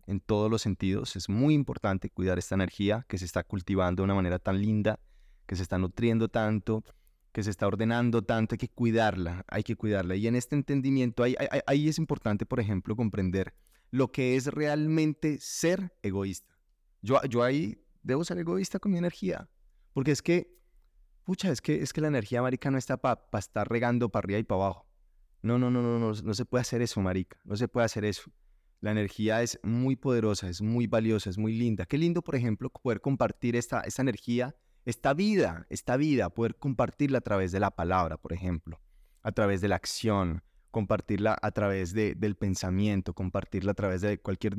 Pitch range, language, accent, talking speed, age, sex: 100-130 Hz, Spanish, Colombian, 200 wpm, 20-39, male